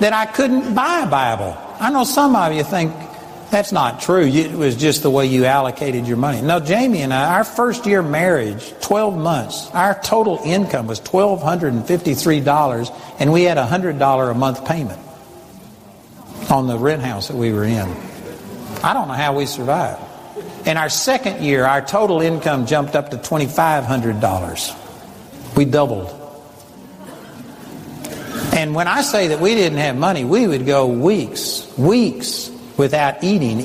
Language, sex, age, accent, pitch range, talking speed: English, male, 60-79, American, 135-190 Hz, 160 wpm